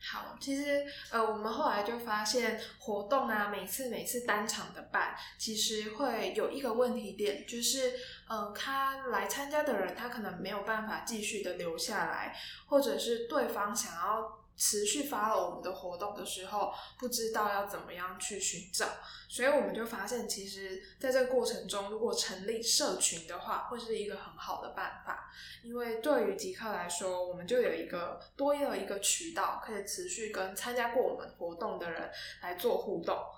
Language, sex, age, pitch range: Chinese, female, 10-29, 200-260 Hz